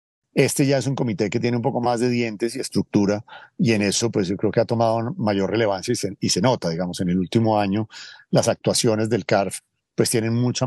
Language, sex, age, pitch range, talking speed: English, male, 50-69, 105-130 Hz, 235 wpm